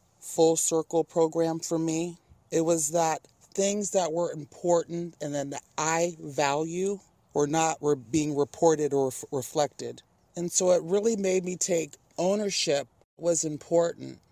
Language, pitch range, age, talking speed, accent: English, 145-170 Hz, 40-59, 140 wpm, American